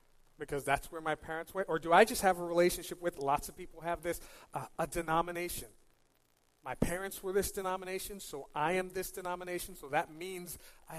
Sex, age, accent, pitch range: male, 40-59, American, 165-205 Hz